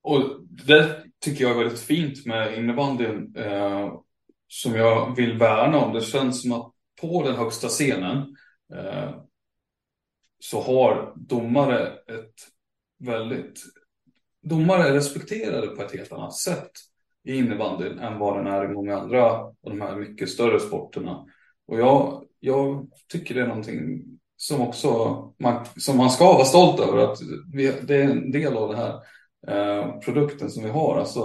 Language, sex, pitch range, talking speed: Swedish, male, 110-140 Hz, 160 wpm